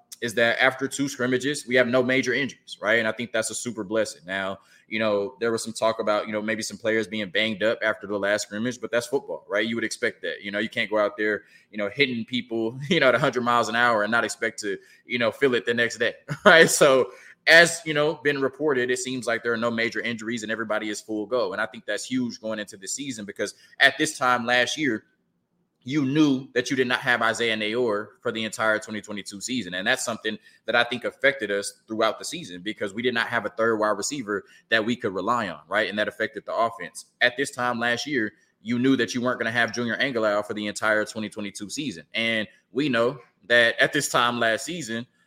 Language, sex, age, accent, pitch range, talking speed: English, male, 20-39, American, 110-125 Hz, 245 wpm